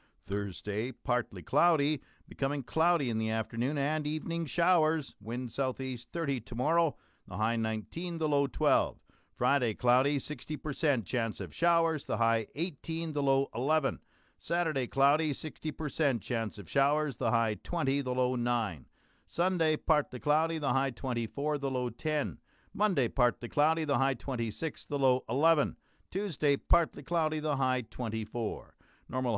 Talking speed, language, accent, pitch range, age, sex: 145 wpm, English, American, 125-160 Hz, 50-69, male